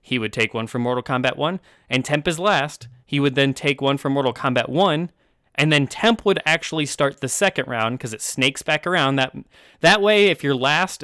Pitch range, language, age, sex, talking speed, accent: 120-145 Hz, English, 20-39, male, 225 wpm, American